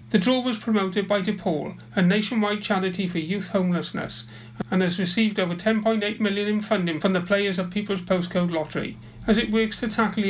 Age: 40-59